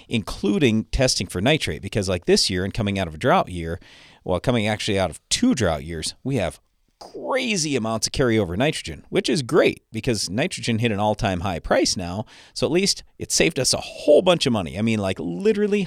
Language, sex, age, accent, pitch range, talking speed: English, male, 40-59, American, 100-150 Hz, 210 wpm